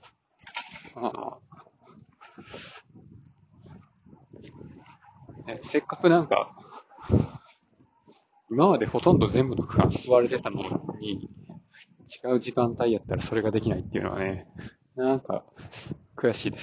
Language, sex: Japanese, male